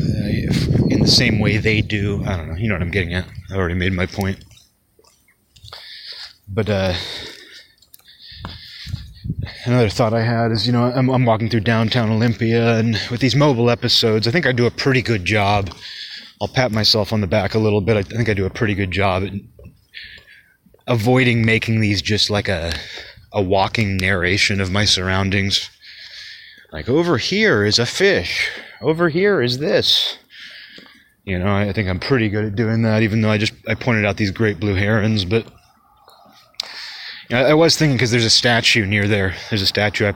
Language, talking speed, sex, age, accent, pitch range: English, 185 wpm, male, 30-49, American, 100-120 Hz